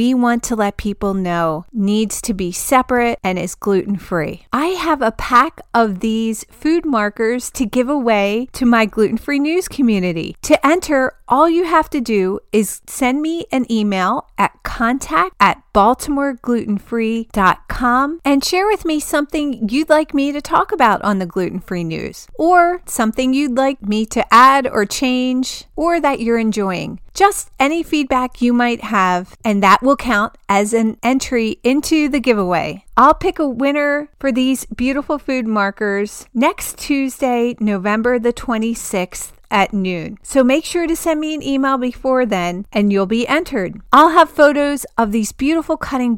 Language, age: English, 40-59